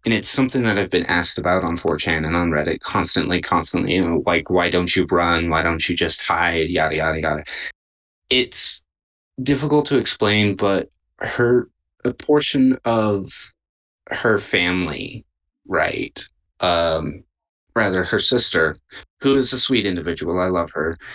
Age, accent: 30-49, American